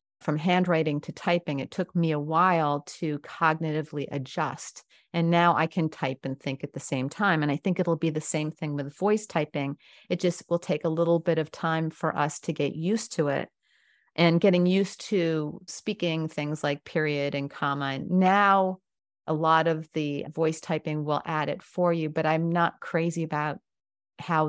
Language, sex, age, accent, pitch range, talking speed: English, female, 40-59, American, 150-190 Hz, 190 wpm